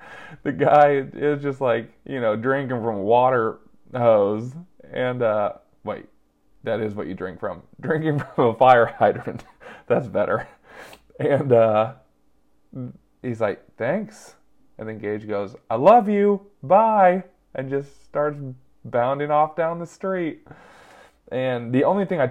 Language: English